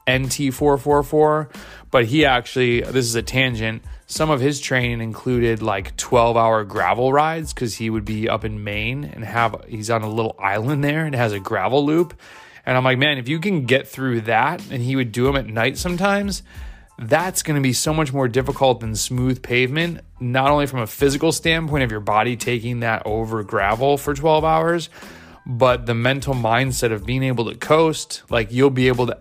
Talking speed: 200 wpm